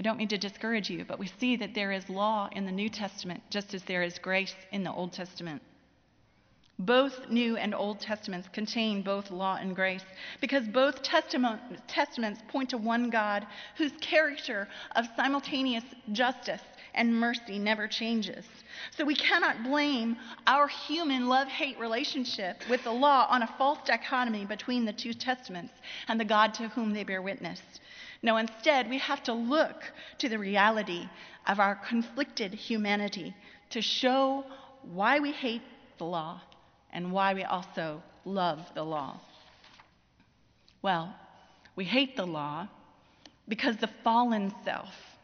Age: 30-49